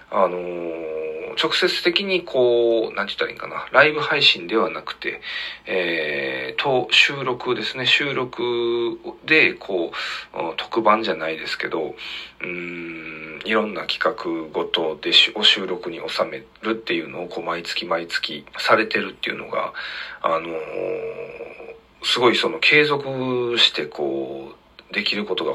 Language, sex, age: Japanese, male, 40-59